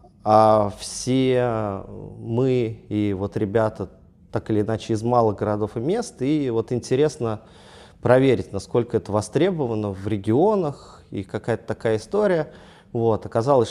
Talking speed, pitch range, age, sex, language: 125 wpm, 100-120 Hz, 20-39, male, Russian